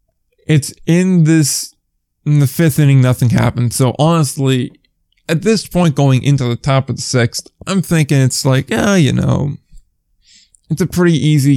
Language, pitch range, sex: English, 125-155 Hz, male